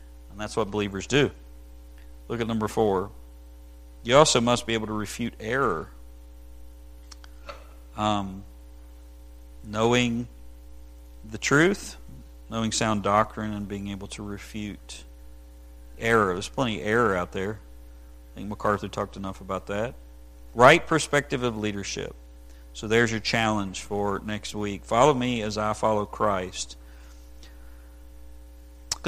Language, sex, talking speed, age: English, male, 125 wpm, 50-69